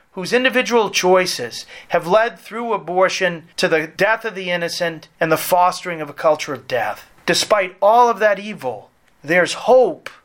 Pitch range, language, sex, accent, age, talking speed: 175-230 Hz, English, male, American, 40-59, 165 wpm